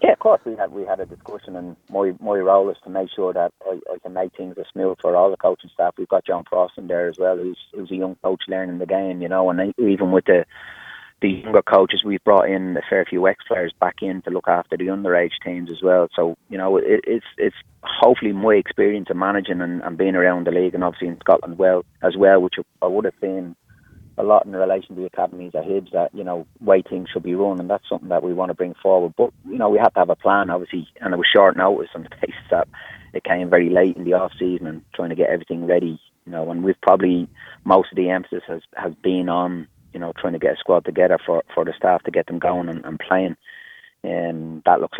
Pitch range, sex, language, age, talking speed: 90-95 Hz, male, English, 30-49, 265 wpm